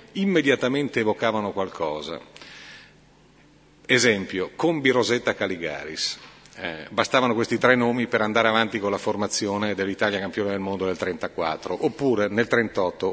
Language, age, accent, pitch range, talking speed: Italian, 40-59, native, 105-130 Hz, 120 wpm